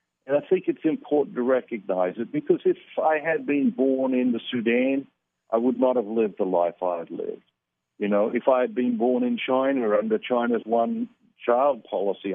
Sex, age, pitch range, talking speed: male, 60-79, 110-145 Hz, 200 wpm